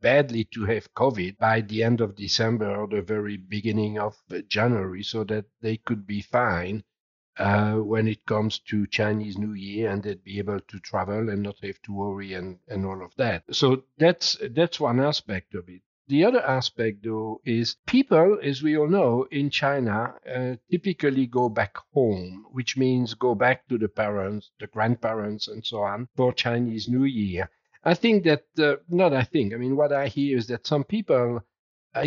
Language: English